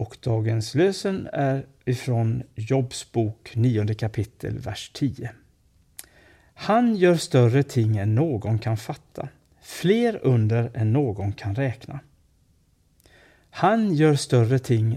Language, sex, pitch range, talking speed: Swedish, male, 110-145 Hz, 110 wpm